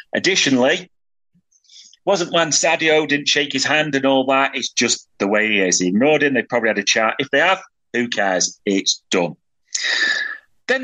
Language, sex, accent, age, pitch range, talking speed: English, male, British, 30-49, 110-170 Hz, 185 wpm